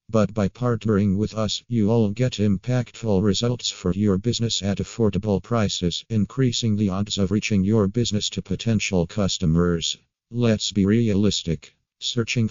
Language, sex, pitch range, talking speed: English, male, 95-110 Hz, 145 wpm